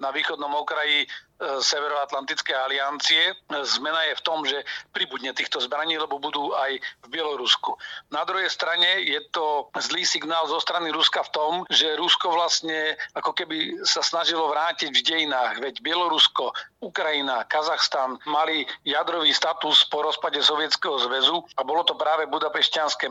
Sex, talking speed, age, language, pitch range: male, 145 wpm, 40-59, Slovak, 140-155 Hz